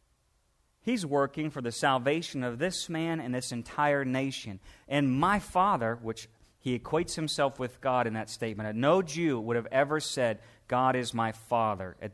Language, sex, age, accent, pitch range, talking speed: English, male, 40-59, American, 115-165 Hz, 180 wpm